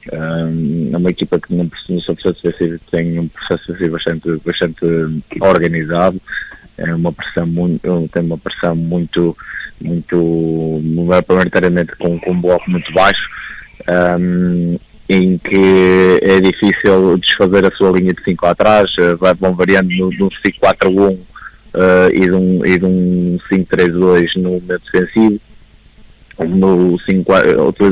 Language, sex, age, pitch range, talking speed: Portuguese, male, 20-39, 85-95 Hz, 135 wpm